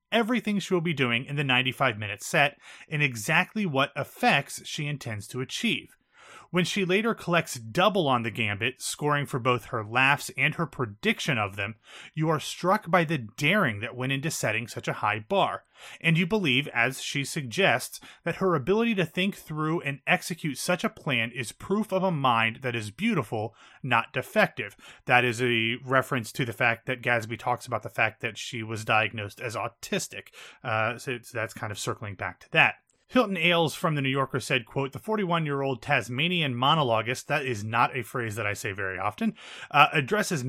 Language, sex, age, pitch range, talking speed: English, male, 30-49, 115-160 Hz, 190 wpm